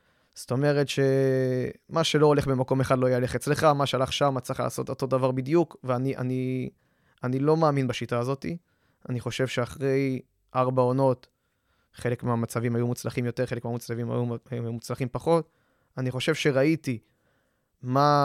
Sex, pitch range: male, 120-145 Hz